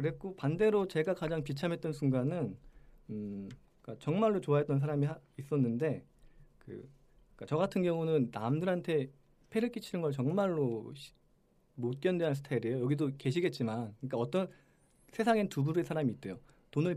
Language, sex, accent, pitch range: Korean, male, native, 120-165 Hz